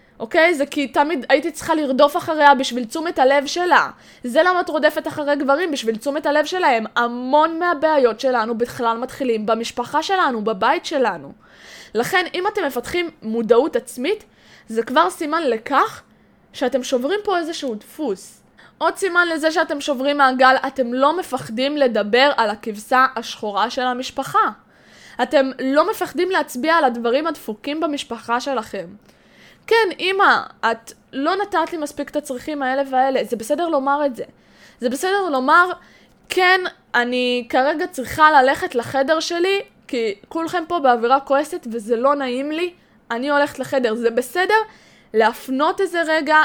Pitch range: 245-330 Hz